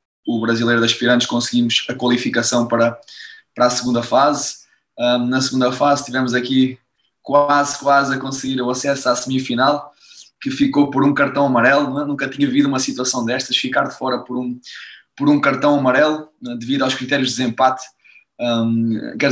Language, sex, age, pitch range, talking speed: Portuguese, male, 20-39, 120-140 Hz, 160 wpm